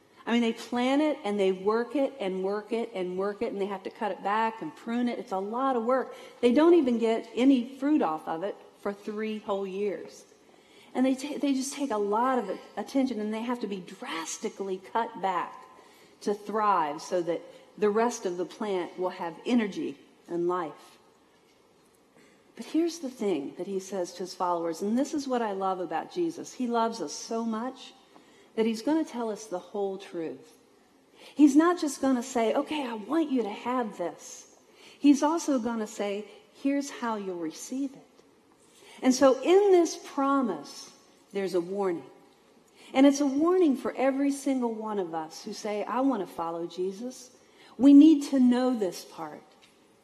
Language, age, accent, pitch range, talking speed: English, 40-59, American, 200-280 Hz, 195 wpm